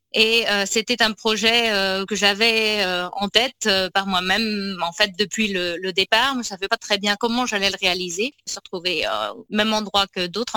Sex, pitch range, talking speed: female, 180-220 Hz, 220 wpm